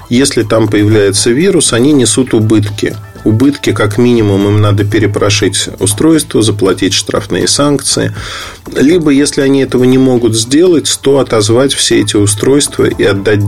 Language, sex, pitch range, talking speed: Russian, male, 100-135 Hz, 140 wpm